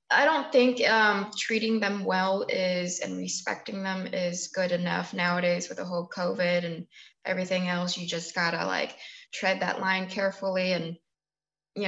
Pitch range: 180-225 Hz